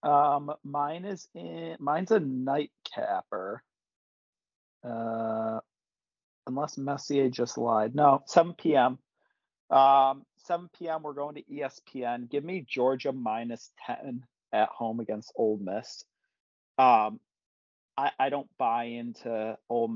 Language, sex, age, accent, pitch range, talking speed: English, male, 40-59, American, 110-140 Hz, 120 wpm